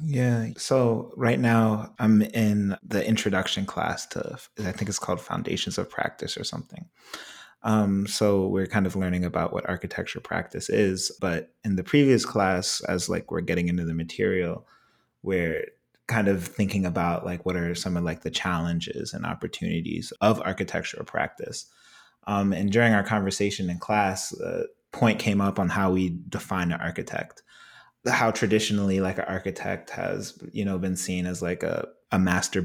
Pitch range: 90-105 Hz